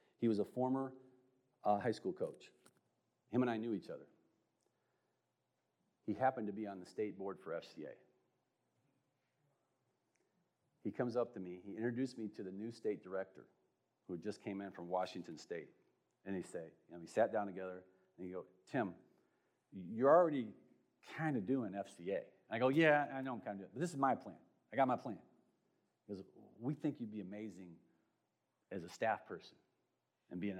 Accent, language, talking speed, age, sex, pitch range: American, English, 190 wpm, 40-59, male, 95-125 Hz